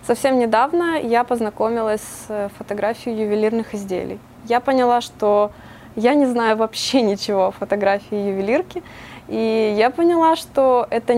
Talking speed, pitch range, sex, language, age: 130 wpm, 205-245 Hz, female, Russian, 20-39